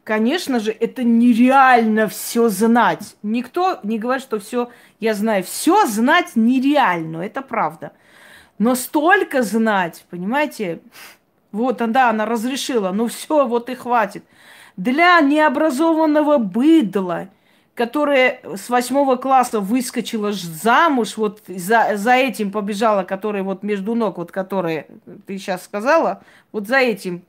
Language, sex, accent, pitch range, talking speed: Russian, female, native, 215-275 Hz, 130 wpm